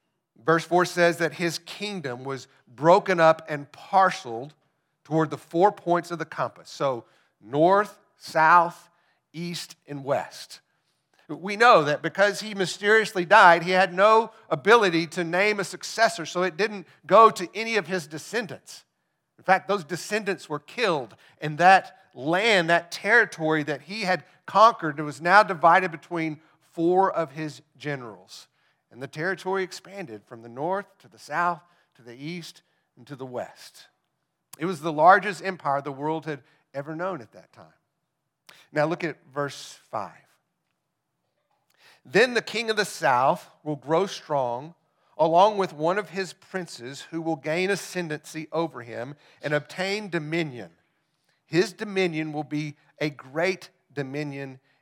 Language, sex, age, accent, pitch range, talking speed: English, male, 50-69, American, 150-190 Hz, 150 wpm